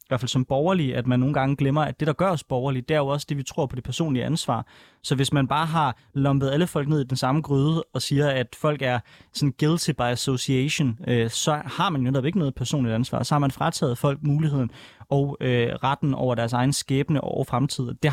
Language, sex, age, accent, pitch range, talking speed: Danish, male, 20-39, native, 125-160 Hz, 250 wpm